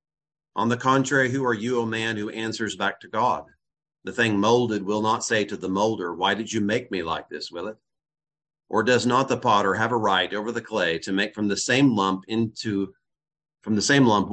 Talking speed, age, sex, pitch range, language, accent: 225 wpm, 40-59, male, 95-120 Hz, English, American